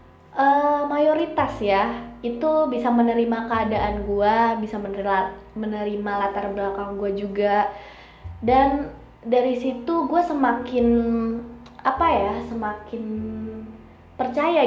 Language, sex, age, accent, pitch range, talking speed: Indonesian, female, 20-39, native, 205-260 Hz, 95 wpm